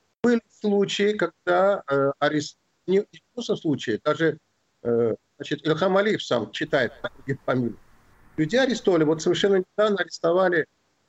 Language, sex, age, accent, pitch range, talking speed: Russian, male, 50-69, native, 130-205 Hz, 115 wpm